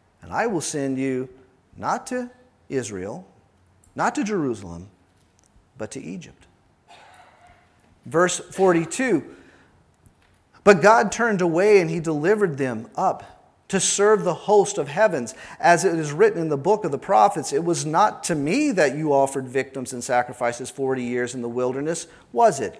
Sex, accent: male, American